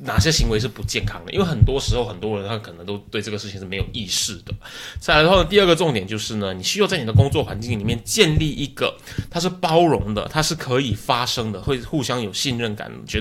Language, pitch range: Chinese, 105-140 Hz